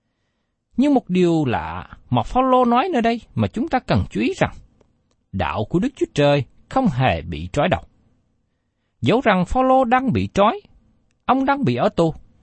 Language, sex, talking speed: Vietnamese, male, 180 wpm